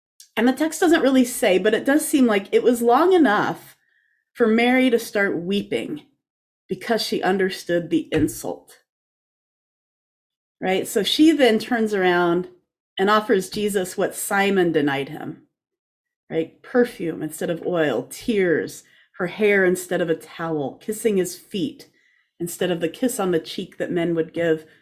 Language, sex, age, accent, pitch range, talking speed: English, female, 30-49, American, 170-235 Hz, 155 wpm